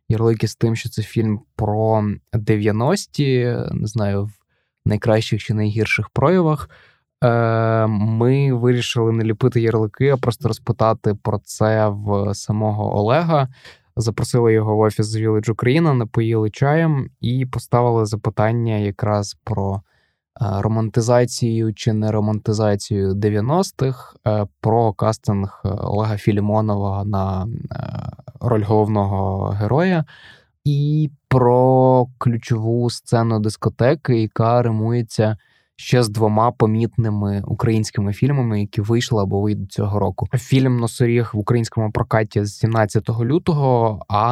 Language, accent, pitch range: Ukrainian, native, 105-120 Hz